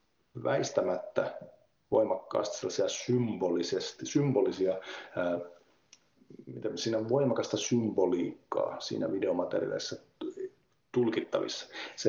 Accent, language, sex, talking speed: native, Finnish, male, 55 wpm